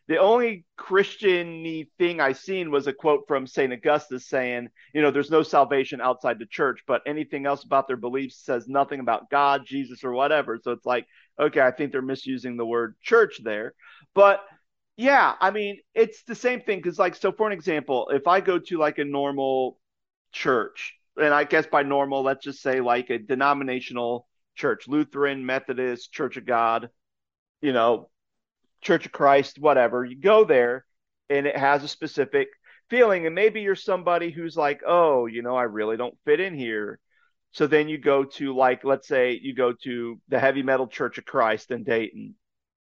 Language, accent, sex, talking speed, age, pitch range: English, American, male, 185 wpm, 40-59, 130-160 Hz